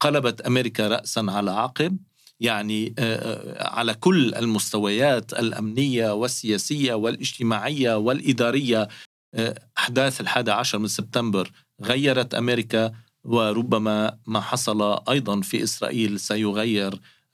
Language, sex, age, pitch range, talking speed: Arabic, male, 40-59, 105-115 Hz, 95 wpm